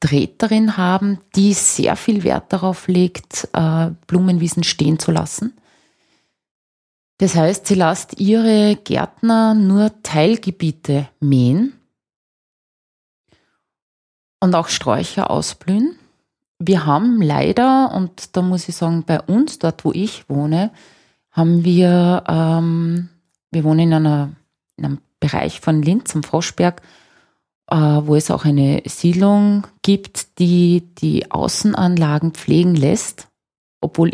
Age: 30-49